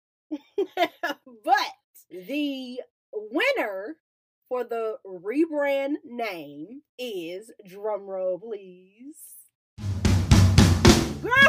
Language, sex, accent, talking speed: English, female, American, 55 wpm